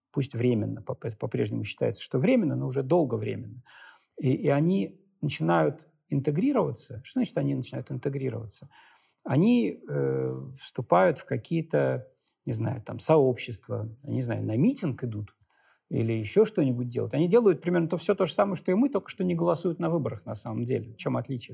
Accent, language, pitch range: native, Russian, 125-180 Hz